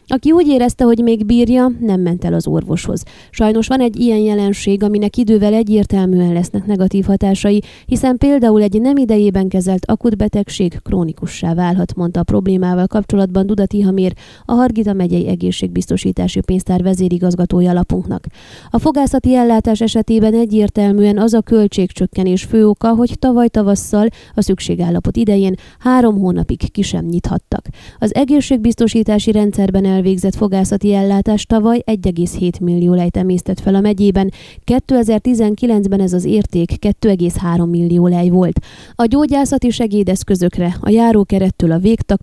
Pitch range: 185-220 Hz